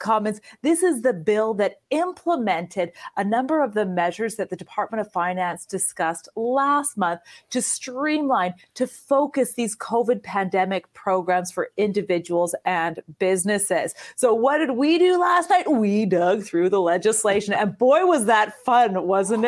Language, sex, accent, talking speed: English, female, American, 155 wpm